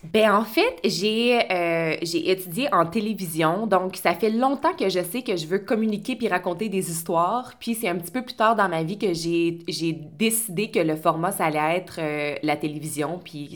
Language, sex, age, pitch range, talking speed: French, female, 20-39, 170-225 Hz, 210 wpm